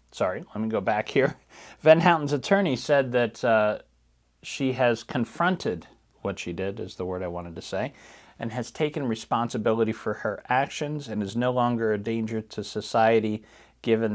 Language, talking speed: English, 175 wpm